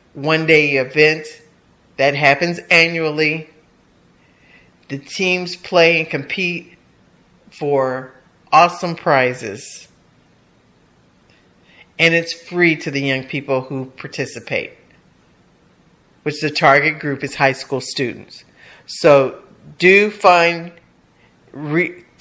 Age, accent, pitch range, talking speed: 50-69, American, 145-175 Hz, 90 wpm